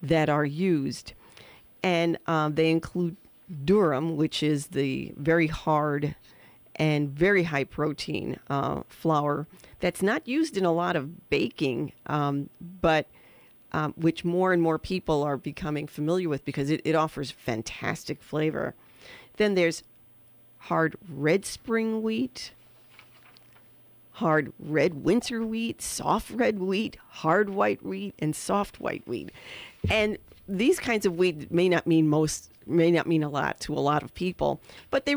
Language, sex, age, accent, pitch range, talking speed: English, female, 40-59, American, 150-190 Hz, 145 wpm